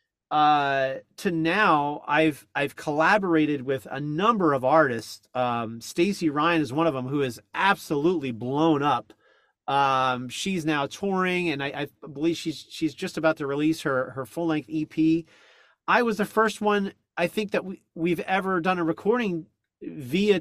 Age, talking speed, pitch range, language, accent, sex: 30-49, 165 wpm, 140-185 Hz, English, American, male